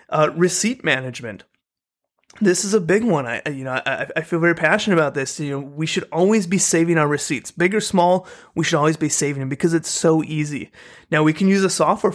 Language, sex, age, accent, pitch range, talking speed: English, male, 30-49, American, 150-180 Hz, 225 wpm